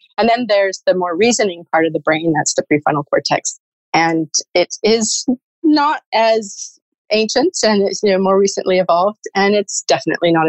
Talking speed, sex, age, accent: 165 wpm, female, 30-49, American